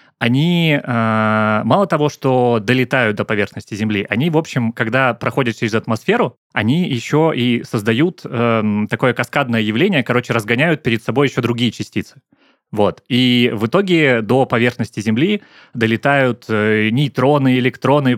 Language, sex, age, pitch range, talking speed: Russian, male, 20-39, 115-140 Hz, 135 wpm